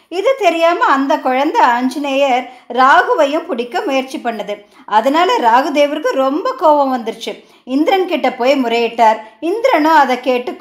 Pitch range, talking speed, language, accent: 245-315 Hz, 115 wpm, Tamil, native